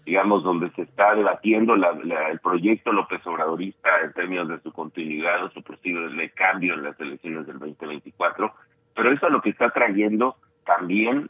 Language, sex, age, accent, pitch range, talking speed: Spanish, male, 50-69, Mexican, 90-110 Hz, 160 wpm